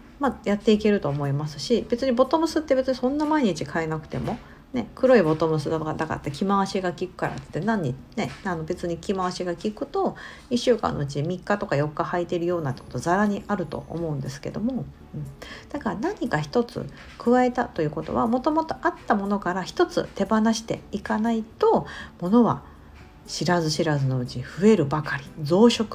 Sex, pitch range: female, 150-240 Hz